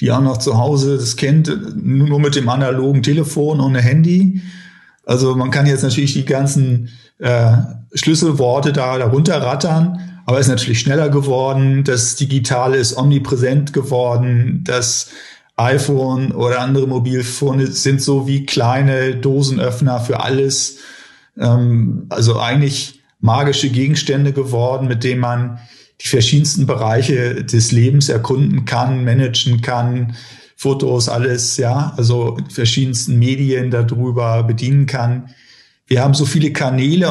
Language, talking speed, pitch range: German, 135 wpm, 120-140 Hz